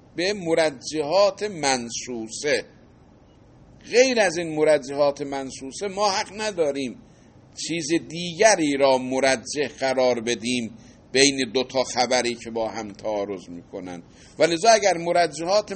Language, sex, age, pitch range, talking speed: Persian, male, 50-69, 125-190 Hz, 110 wpm